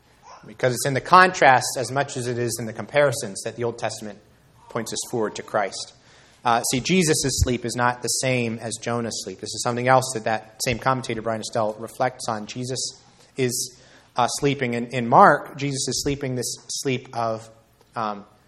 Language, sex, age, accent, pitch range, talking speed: English, male, 30-49, American, 115-145 Hz, 190 wpm